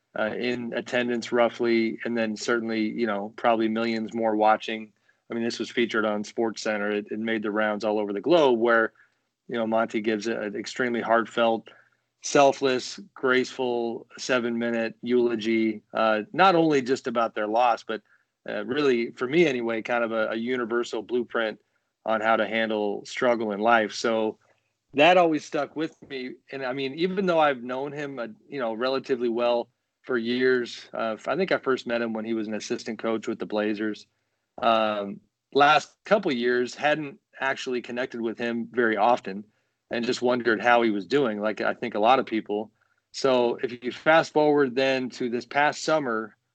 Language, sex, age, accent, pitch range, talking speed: English, male, 30-49, American, 110-130 Hz, 180 wpm